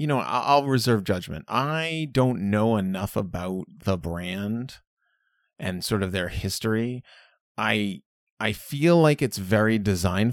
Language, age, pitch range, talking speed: English, 30-49, 100-135 Hz, 140 wpm